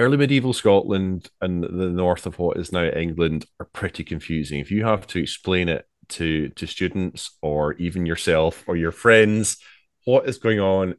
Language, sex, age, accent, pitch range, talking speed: English, male, 30-49, British, 90-105 Hz, 180 wpm